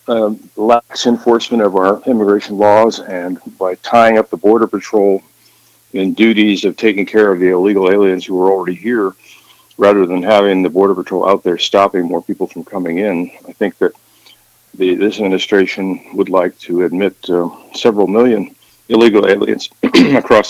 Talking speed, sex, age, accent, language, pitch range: 165 wpm, male, 50-69, American, English, 95-110 Hz